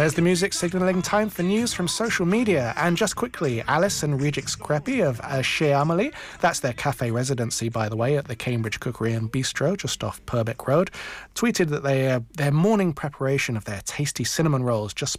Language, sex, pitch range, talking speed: English, male, 125-170 Hz, 200 wpm